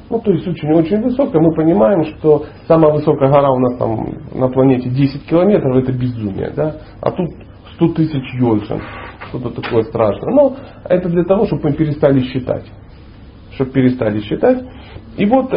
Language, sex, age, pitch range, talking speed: Russian, male, 40-59, 130-180 Hz, 160 wpm